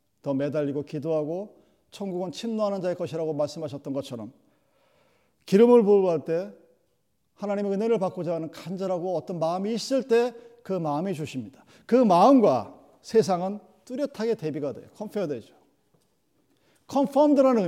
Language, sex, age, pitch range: Korean, male, 40-59, 160-230 Hz